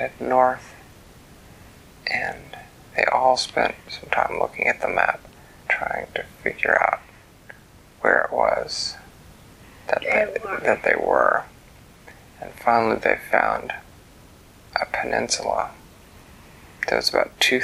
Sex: male